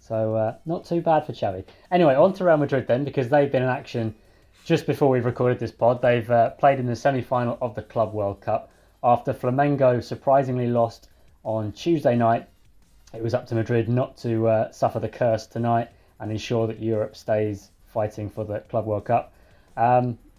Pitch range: 105-135 Hz